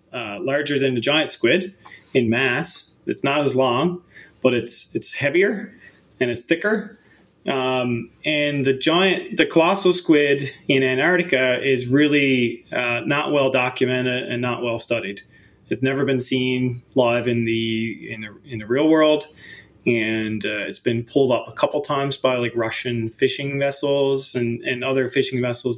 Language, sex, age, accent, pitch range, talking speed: English, male, 20-39, American, 120-145 Hz, 165 wpm